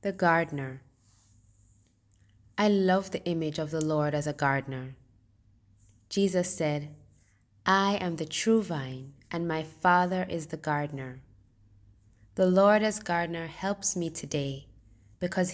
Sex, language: female, English